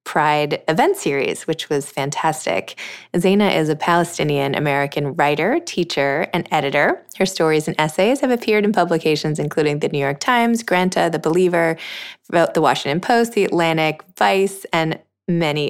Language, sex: English, female